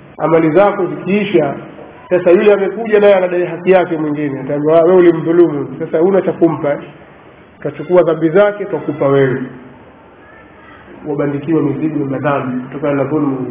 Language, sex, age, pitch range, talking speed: Swahili, male, 40-59, 155-195 Hz, 135 wpm